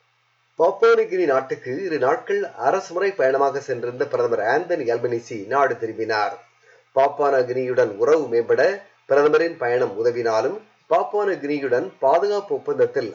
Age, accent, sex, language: 30-49, native, male, Tamil